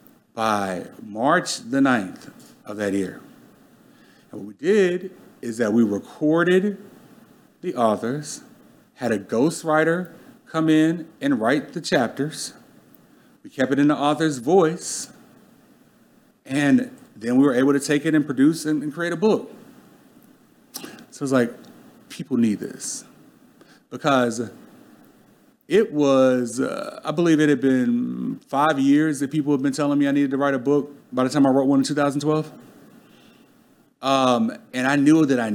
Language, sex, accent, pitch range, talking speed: English, male, American, 140-200 Hz, 150 wpm